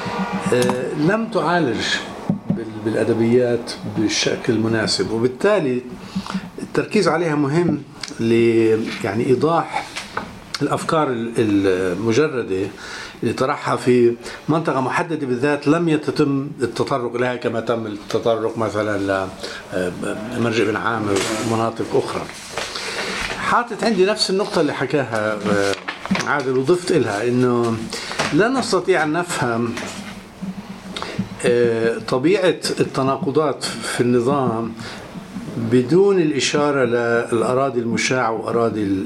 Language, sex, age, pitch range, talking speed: English, male, 50-69, 115-165 Hz, 80 wpm